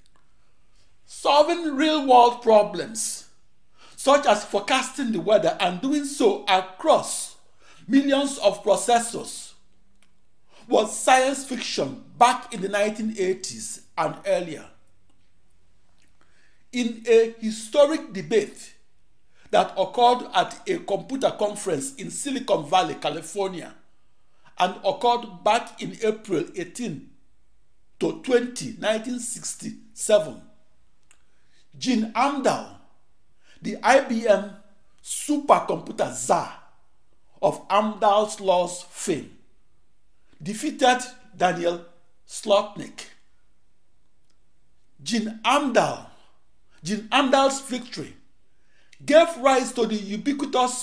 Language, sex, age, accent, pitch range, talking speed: English, male, 50-69, Nigerian, 200-260 Hz, 80 wpm